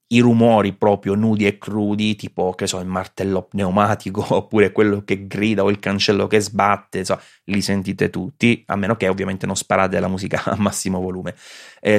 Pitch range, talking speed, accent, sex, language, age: 95-110 Hz, 180 wpm, native, male, Italian, 30-49